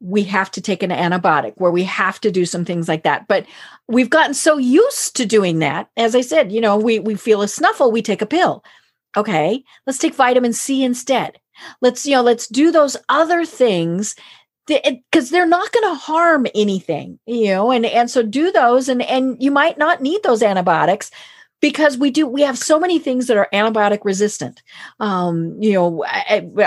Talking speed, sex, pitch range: 200 wpm, female, 190-255 Hz